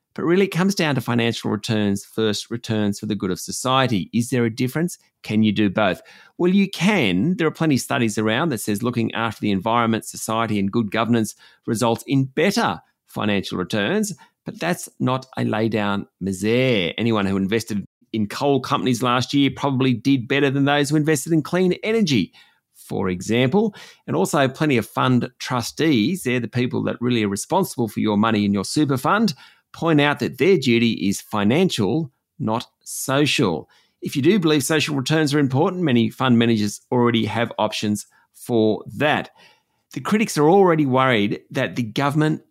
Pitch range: 110-145 Hz